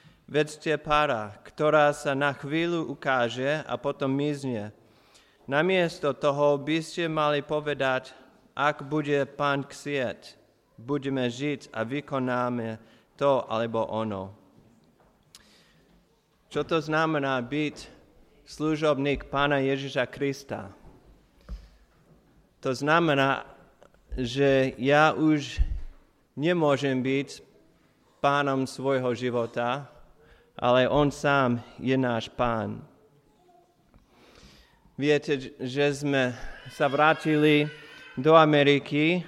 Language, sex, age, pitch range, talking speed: Slovak, male, 30-49, 125-150 Hz, 90 wpm